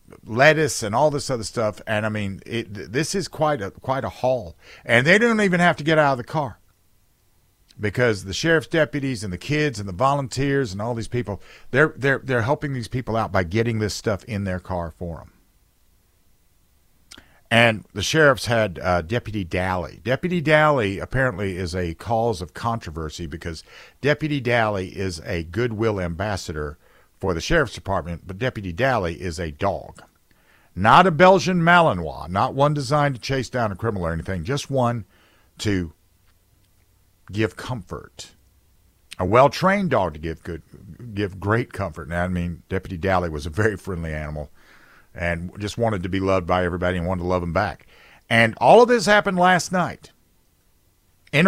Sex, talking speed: male, 175 wpm